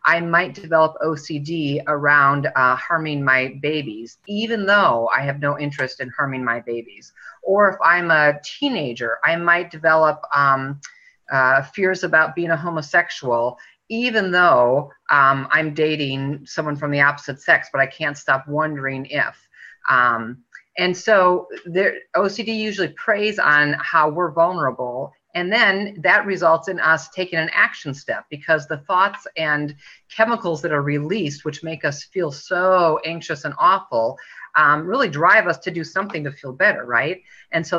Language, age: English, 30-49